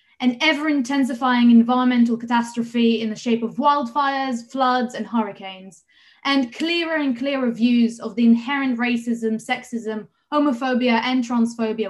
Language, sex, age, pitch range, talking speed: English, female, 20-39, 230-285 Hz, 130 wpm